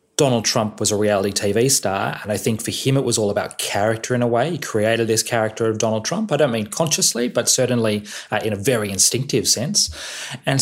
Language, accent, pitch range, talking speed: English, Australian, 100-130 Hz, 225 wpm